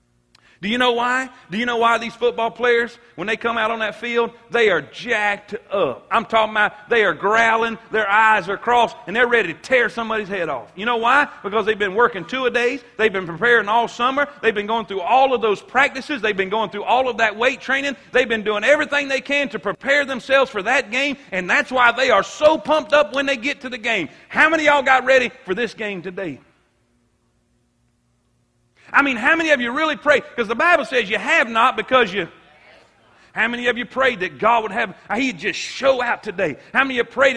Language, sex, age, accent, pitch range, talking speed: English, male, 40-59, American, 220-275 Hz, 230 wpm